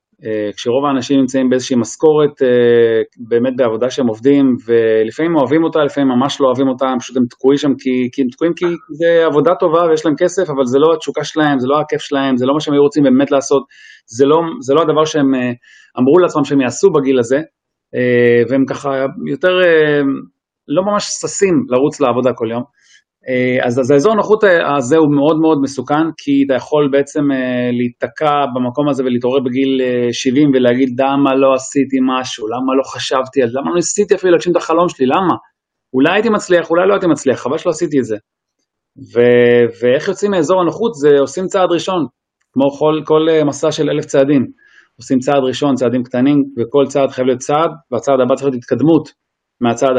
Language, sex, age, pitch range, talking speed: Hebrew, male, 30-49, 130-160 Hz, 180 wpm